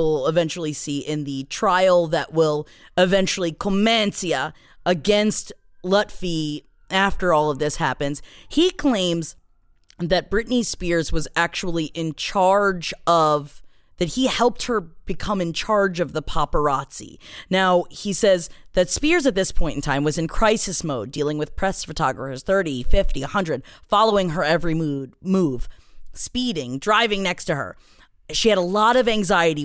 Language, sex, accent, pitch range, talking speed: English, female, American, 155-215 Hz, 150 wpm